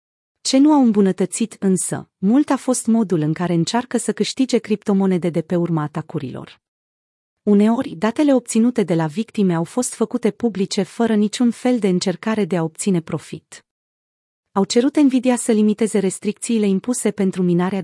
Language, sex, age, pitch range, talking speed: Romanian, female, 30-49, 175-230 Hz, 160 wpm